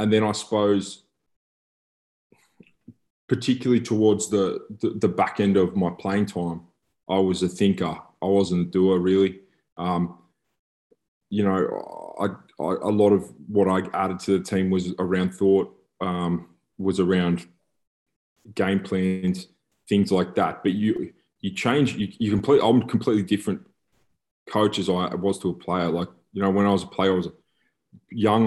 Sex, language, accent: male, English, Australian